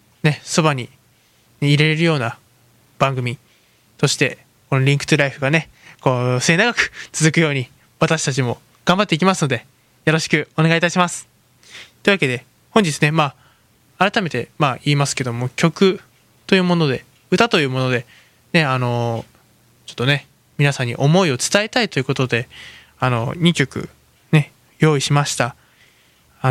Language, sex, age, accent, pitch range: Japanese, male, 20-39, native, 125-165 Hz